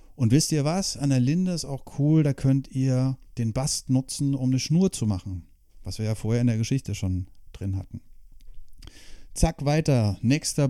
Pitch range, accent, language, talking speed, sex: 115-150 Hz, German, German, 190 wpm, male